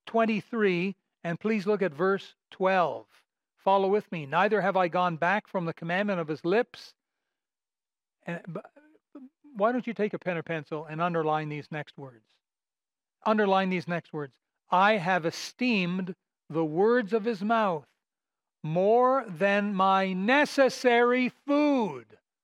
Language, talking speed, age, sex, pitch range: English, 135 wpm, 60-79, male, 175-225 Hz